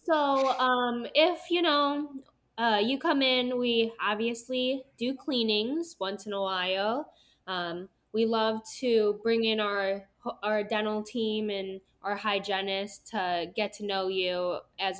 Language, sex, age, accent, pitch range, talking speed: English, female, 10-29, American, 190-245 Hz, 145 wpm